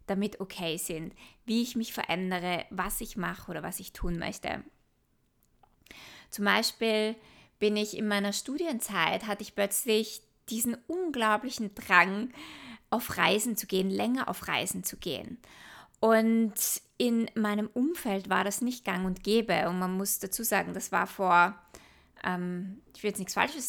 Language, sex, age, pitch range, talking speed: German, female, 20-39, 185-225 Hz, 155 wpm